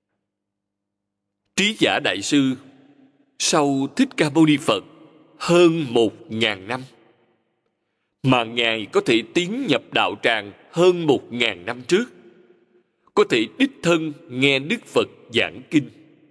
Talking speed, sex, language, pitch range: 135 wpm, male, Vietnamese, 115-175 Hz